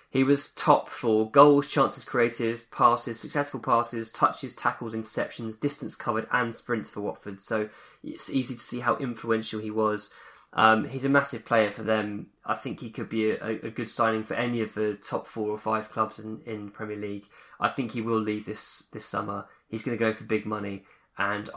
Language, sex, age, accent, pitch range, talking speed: English, male, 20-39, British, 110-135 Hz, 205 wpm